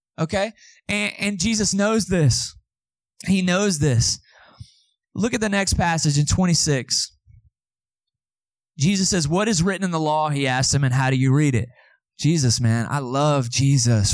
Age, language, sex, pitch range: 20-39, English, male, 120-160 Hz